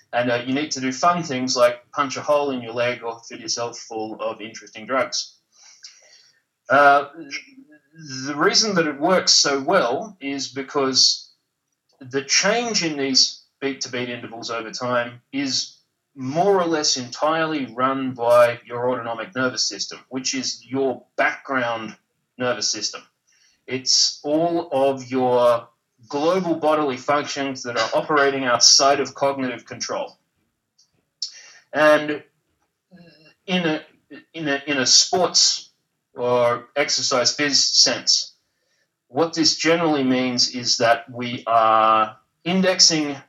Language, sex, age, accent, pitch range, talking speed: English, male, 30-49, Australian, 125-150 Hz, 130 wpm